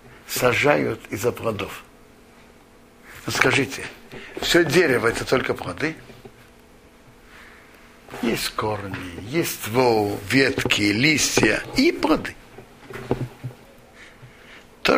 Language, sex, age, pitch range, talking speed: Russian, male, 60-79, 125-170 Hz, 80 wpm